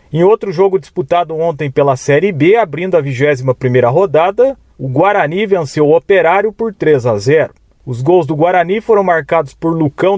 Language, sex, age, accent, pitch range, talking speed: Portuguese, male, 40-59, Brazilian, 145-200 Hz, 175 wpm